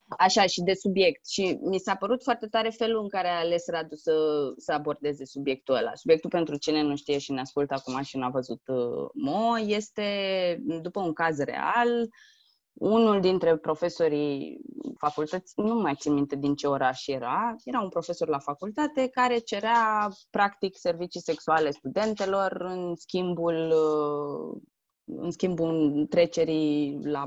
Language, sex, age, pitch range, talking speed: Romanian, female, 20-39, 150-220 Hz, 150 wpm